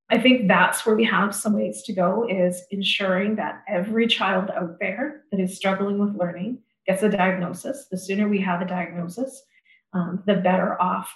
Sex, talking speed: female, 190 wpm